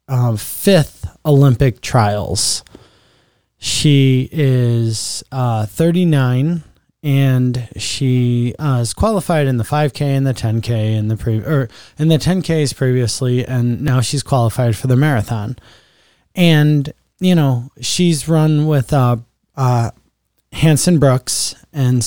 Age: 20-39